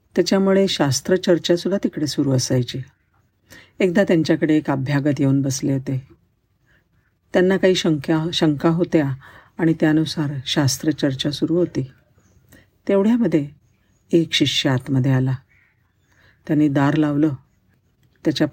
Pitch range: 125-170 Hz